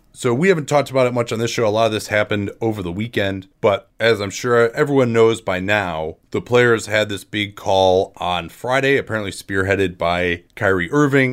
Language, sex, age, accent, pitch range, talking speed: English, male, 30-49, American, 95-120 Hz, 205 wpm